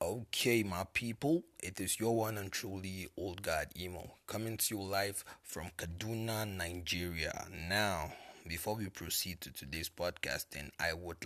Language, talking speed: English, 150 wpm